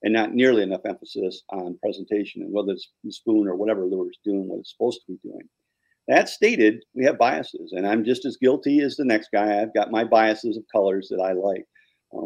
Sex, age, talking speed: male, 50-69, 230 wpm